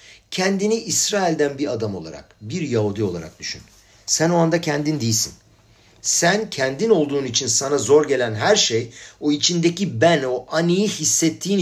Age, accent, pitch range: 50-69, native, 105-165 Hz